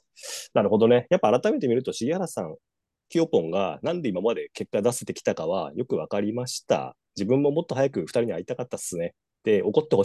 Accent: native